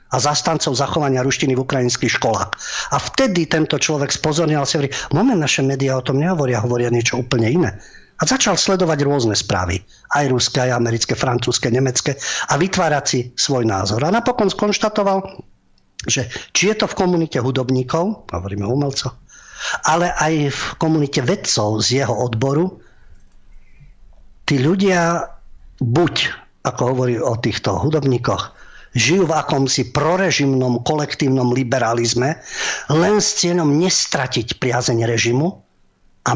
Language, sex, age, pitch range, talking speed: Slovak, male, 50-69, 120-155 Hz, 130 wpm